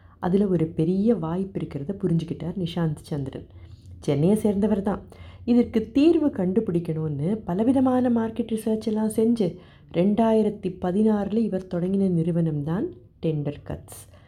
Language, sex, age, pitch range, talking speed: Tamil, female, 30-49, 165-220 Hz, 105 wpm